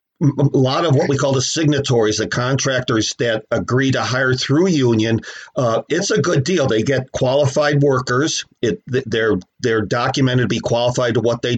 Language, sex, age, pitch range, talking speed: English, male, 50-69, 120-140 Hz, 180 wpm